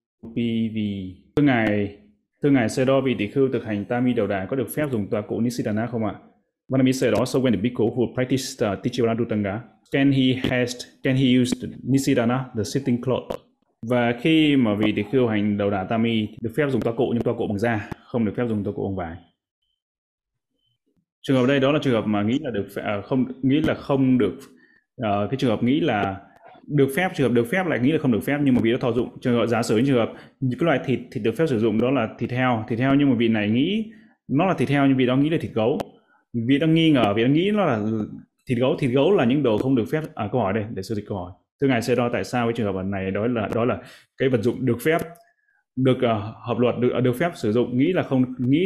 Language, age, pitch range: Vietnamese, 20-39, 110-135 Hz